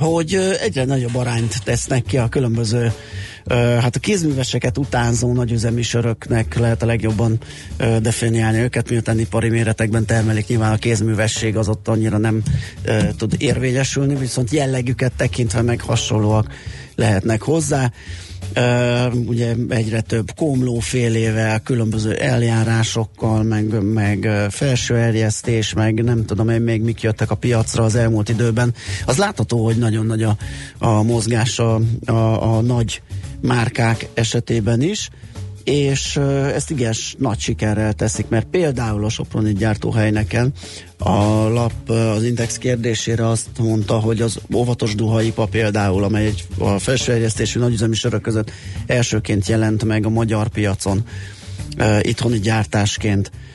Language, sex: Hungarian, male